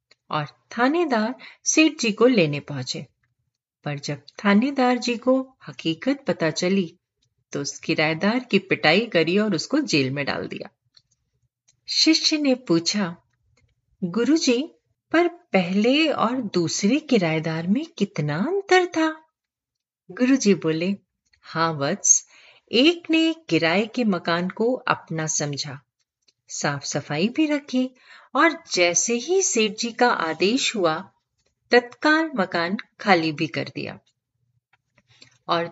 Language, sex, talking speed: Hindi, female, 115 wpm